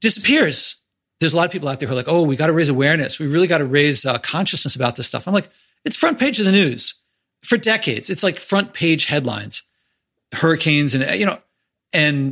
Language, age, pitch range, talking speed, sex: English, 40-59, 135-175 Hz, 230 wpm, male